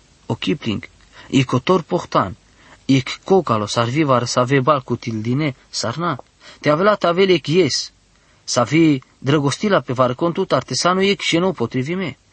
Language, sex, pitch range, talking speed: English, male, 130-175 Hz, 150 wpm